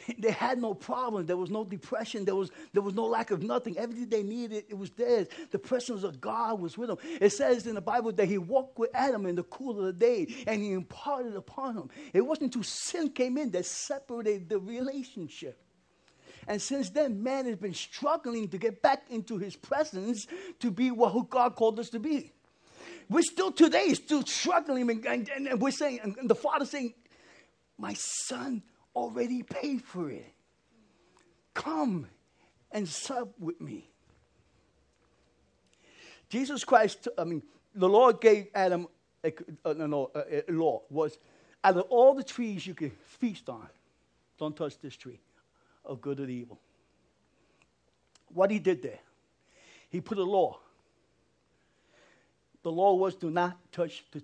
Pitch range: 165-250 Hz